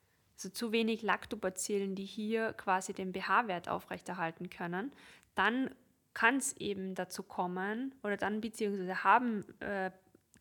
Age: 20-39